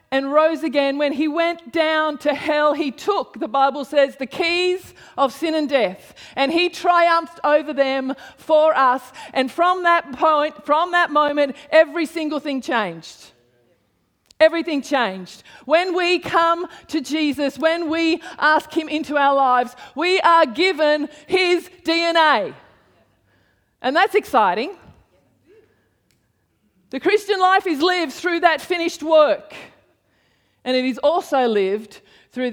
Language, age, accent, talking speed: English, 40-59, Australian, 140 wpm